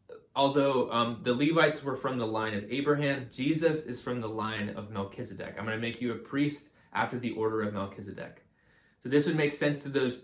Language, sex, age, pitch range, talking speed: English, male, 20-39, 105-130 Hz, 210 wpm